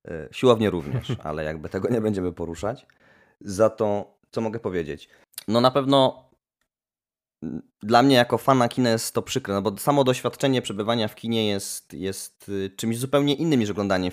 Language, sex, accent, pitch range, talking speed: Polish, male, native, 105-135 Hz, 160 wpm